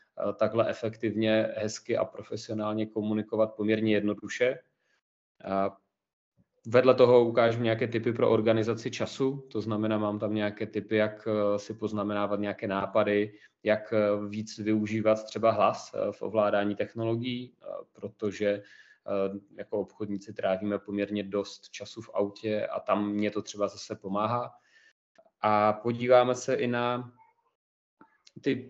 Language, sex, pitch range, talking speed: Czech, male, 105-120 Hz, 120 wpm